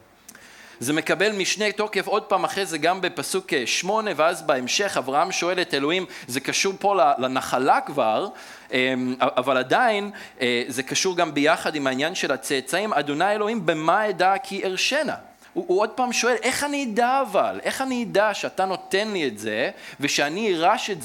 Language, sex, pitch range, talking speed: Hebrew, male, 140-200 Hz, 165 wpm